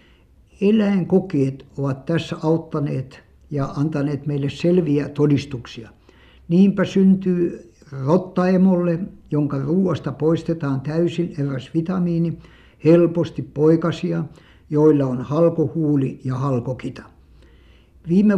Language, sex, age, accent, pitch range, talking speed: Finnish, male, 60-79, native, 135-175 Hz, 85 wpm